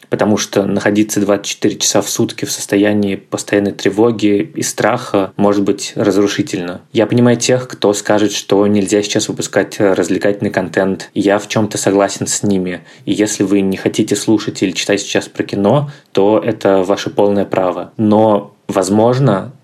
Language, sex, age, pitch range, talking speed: Russian, male, 20-39, 100-105 Hz, 155 wpm